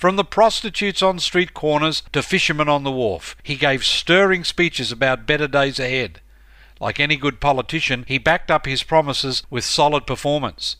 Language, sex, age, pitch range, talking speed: English, male, 50-69, 125-175 Hz, 170 wpm